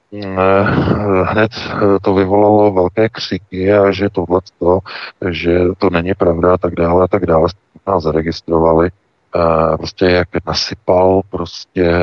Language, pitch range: Czech, 80-95 Hz